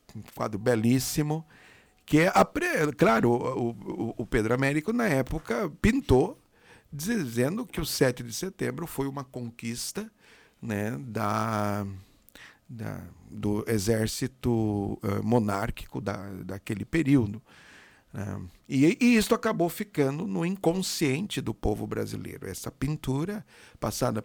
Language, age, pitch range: Portuguese, 50-69, 110-165 Hz